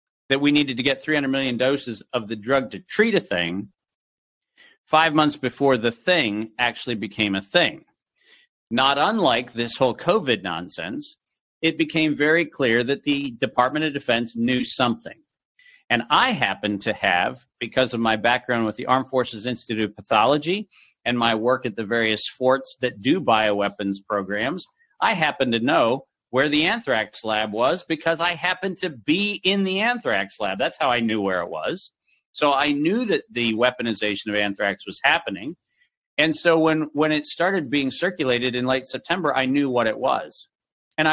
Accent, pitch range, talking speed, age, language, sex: American, 115-160 Hz, 175 wpm, 50-69, English, male